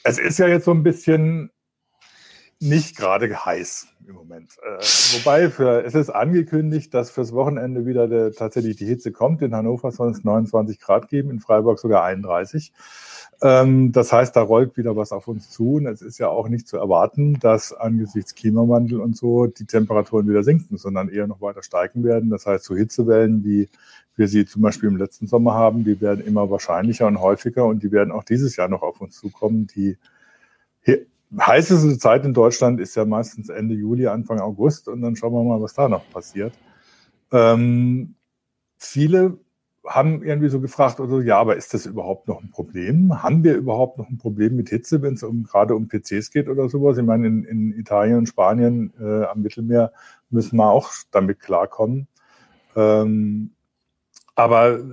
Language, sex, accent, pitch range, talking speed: German, male, German, 110-130 Hz, 185 wpm